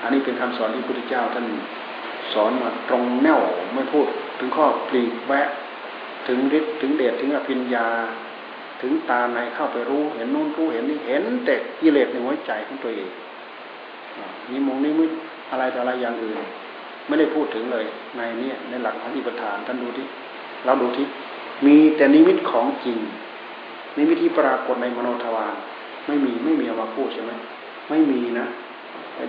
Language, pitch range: Thai, 125-155 Hz